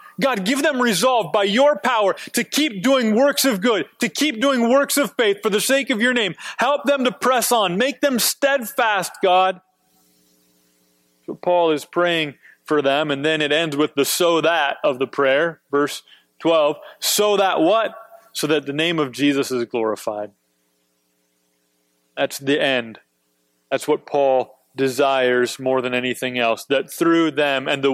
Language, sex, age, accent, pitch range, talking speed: English, male, 30-49, American, 125-170 Hz, 170 wpm